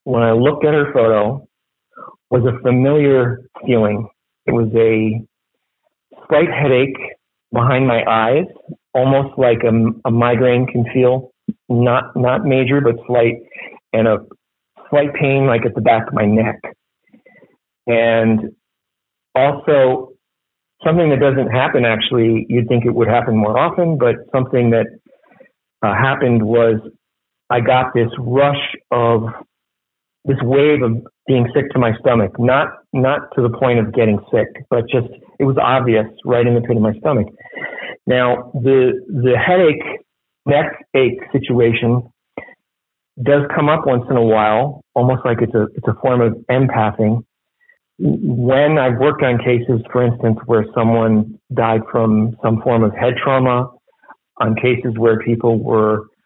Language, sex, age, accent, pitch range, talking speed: English, male, 40-59, American, 115-130 Hz, 145 wpm